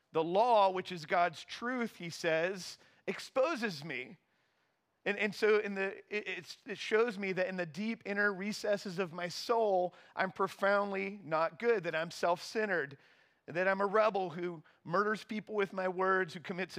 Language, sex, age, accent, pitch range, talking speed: English, male, 40-59, American, 160-195 Hz, 170 wpm